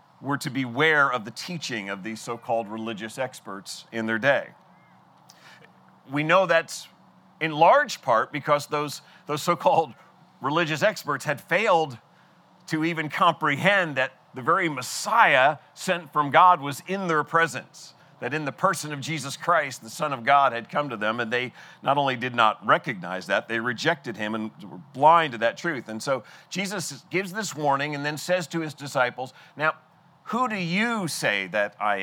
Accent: American